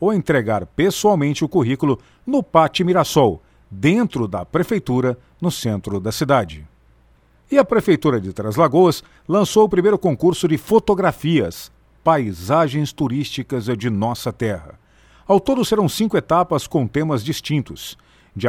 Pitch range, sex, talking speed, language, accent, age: 120-175 Hz, male, 135 wpm, Portuguese, Brazilian, 50-69